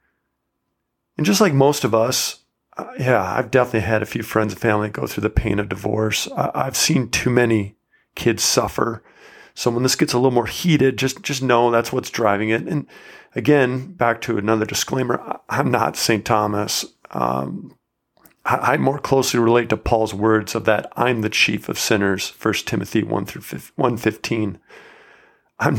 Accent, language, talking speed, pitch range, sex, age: American, English, 180 wpm, 110-130 Hz, male, 40-59